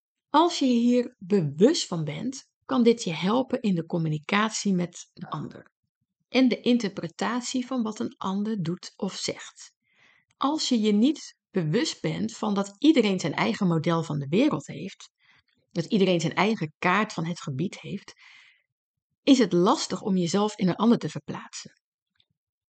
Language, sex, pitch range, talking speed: Dutch, female, 180-245 Hz, 165 wpm